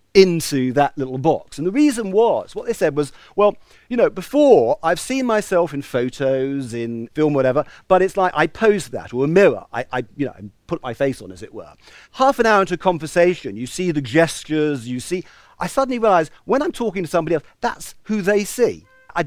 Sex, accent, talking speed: male, British, 220 wpm